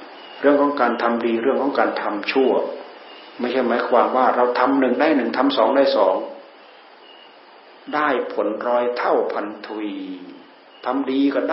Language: Thai